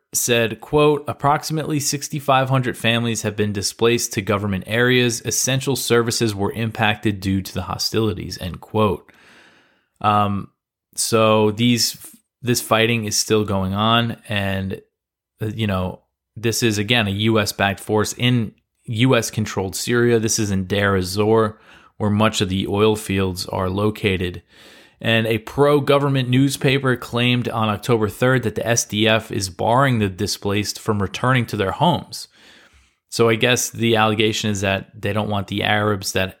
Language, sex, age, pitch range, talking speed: English, male, 20-39, 105-120 Hz, 145 wpm